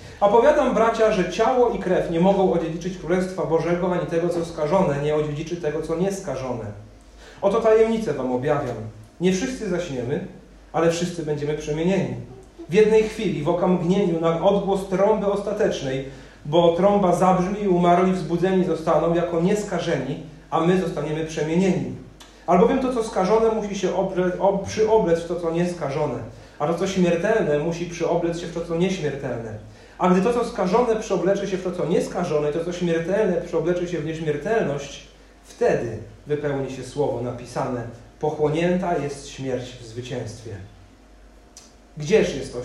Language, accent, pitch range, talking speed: Polish, native, 130-185 Hz, 150 wpm